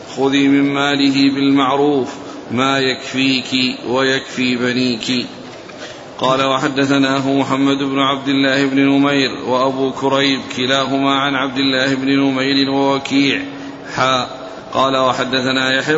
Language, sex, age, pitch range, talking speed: Arabic, male, 40-59, 130-140 Hz, 105 wpm